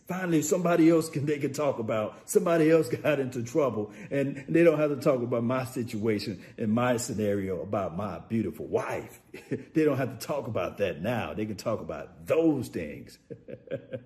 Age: 50-69